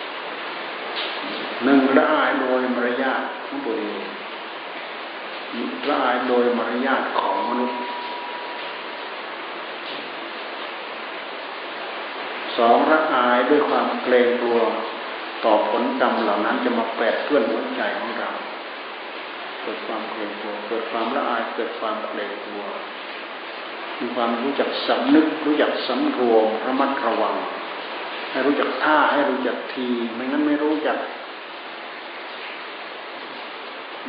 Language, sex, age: Thai, male, 60-79